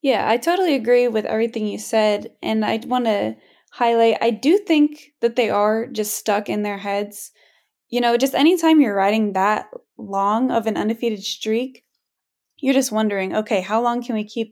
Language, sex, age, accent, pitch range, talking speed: English, female, 10-29, American, 210-245 Hz, 185 wpm